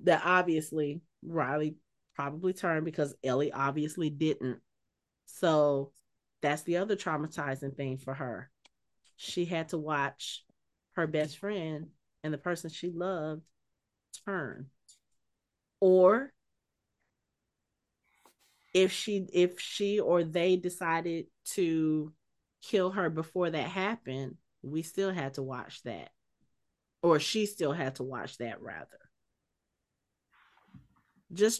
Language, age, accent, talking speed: English, 30-49, American, 110 wpm